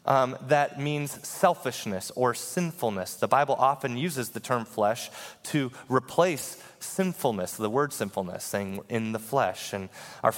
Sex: male